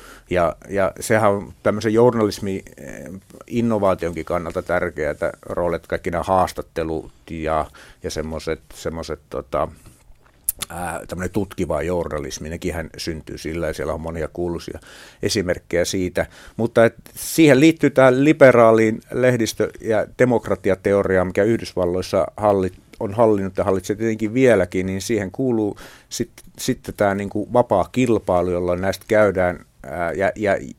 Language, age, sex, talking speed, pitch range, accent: Finnish, 50-69, male, 115 wpm, 90-110 Hz, native